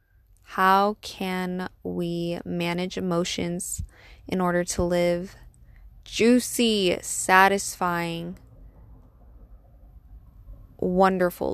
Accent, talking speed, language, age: American, 60 wpm, English, 20-39